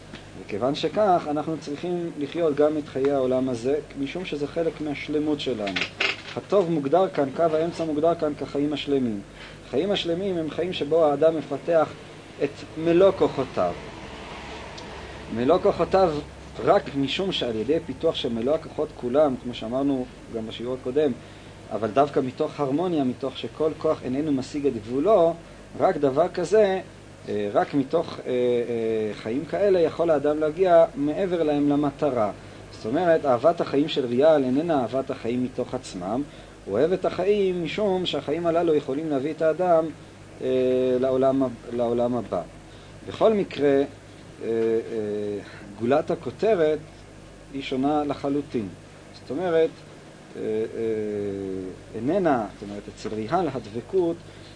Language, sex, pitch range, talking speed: English, male, 125-160 Hz, 130 wpm